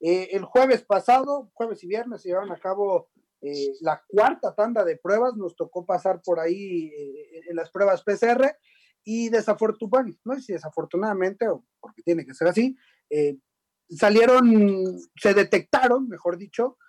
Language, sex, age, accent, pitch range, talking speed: Spanish, male, 30-49, Mexican, 175-260 Hz, 155 wpm